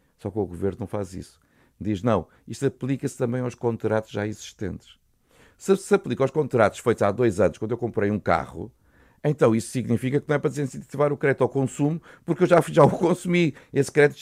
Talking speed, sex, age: 210 wpm, male, 50-69